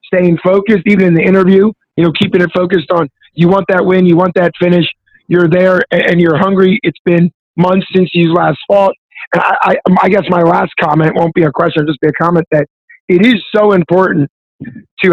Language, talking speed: English, 220 wpm